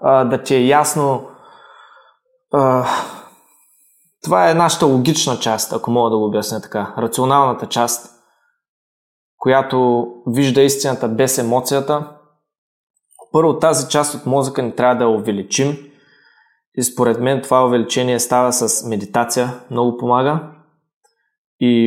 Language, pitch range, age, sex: Bulgarian, 115-140 Hz, 20-39, male